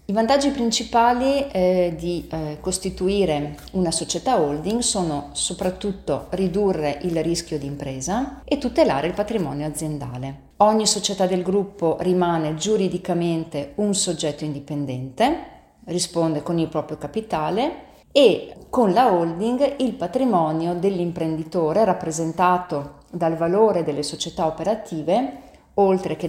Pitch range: 160-210 Hz